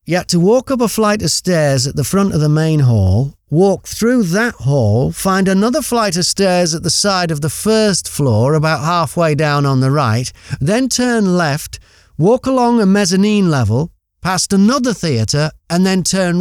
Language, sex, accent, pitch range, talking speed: English, male, British, 135-200 Hz, 190 wpm